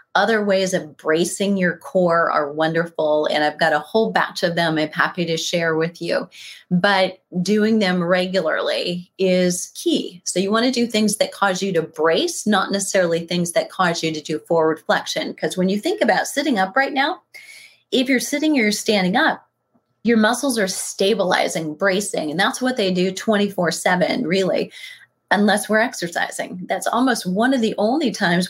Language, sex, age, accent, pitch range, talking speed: English, female, 30-49, American, 180-230 Hz, 185 wpm